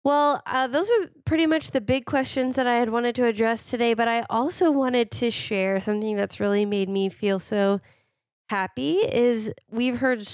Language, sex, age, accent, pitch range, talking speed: English, female, 20-39, American, 185-230 Hz, 190 wpm